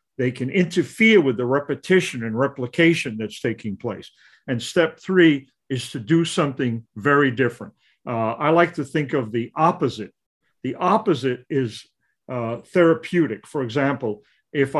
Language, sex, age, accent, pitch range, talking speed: English, male, 50-69, American, 125-165 Hz, 145 wpm